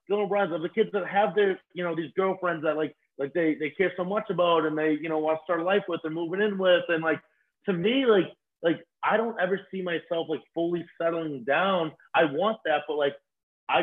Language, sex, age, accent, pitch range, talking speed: English, male, 30-49, American, 155-185 Hz, 230 wpm